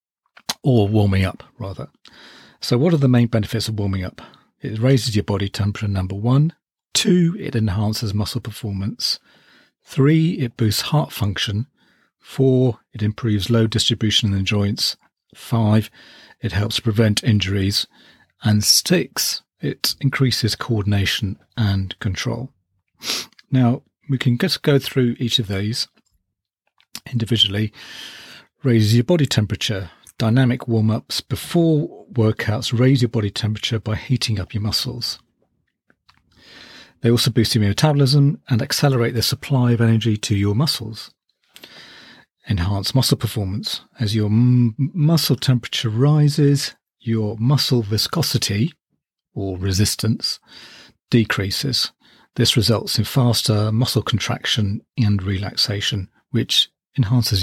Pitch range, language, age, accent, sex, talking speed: 105-130 Hz, English, 40-59, British, male, 120 wpm